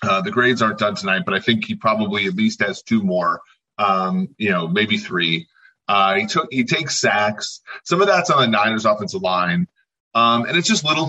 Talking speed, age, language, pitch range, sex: 215 wpm, 30-49, English, 110-140 Hz, male